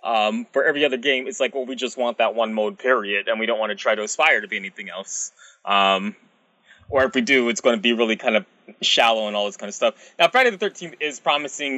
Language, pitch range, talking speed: English, 120-170 Hz, 265 wpm